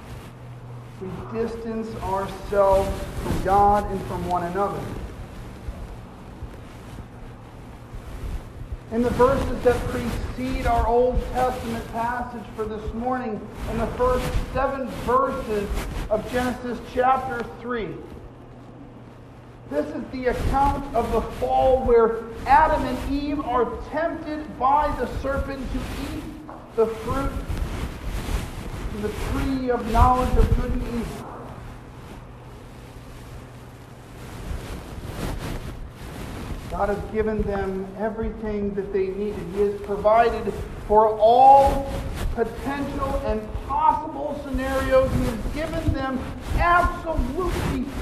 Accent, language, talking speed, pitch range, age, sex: American, English, 100 wpm, 195-270 Hz, 40-59, male